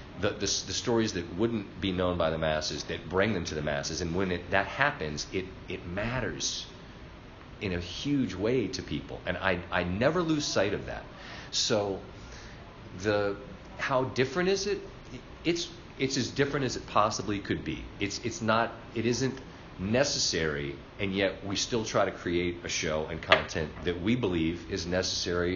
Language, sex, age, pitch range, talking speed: English, male, 40-59, 85-115 Hz, 180 wpm